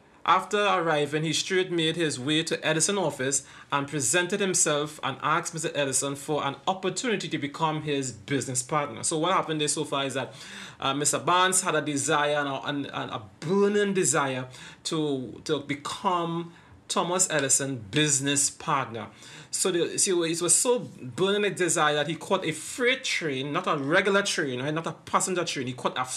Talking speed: 185 wpm